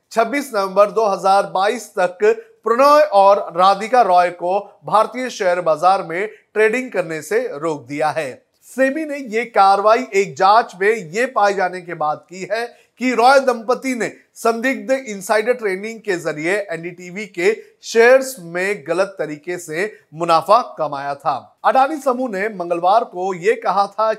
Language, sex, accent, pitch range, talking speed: Hindi, male, native, 175-230 Hz, 150 wpm